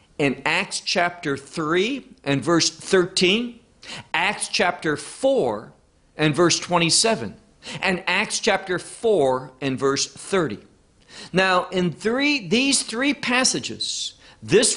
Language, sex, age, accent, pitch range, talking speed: English, male, 50-69, American, 140-210 Hz, 110 wpm